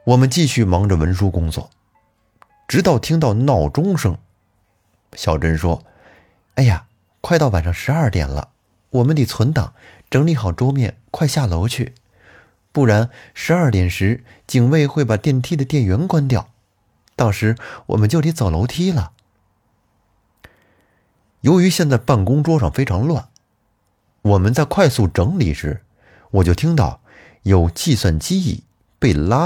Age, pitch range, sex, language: 30-49, 90-125 Hz, male, Chinese